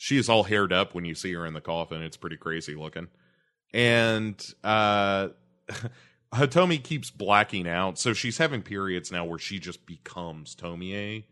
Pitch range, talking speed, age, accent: 80-110 Hz, 170 wpm, 30-49, American